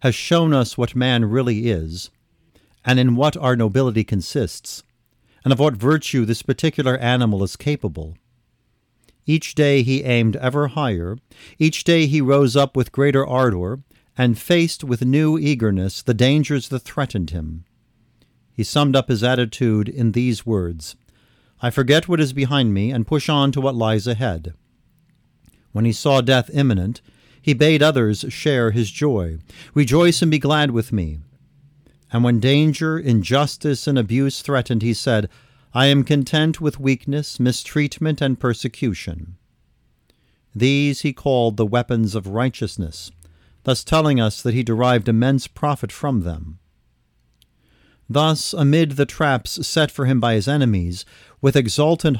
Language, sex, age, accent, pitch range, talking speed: English, male, 50-69, American, 110-145 Hz, 150 wpm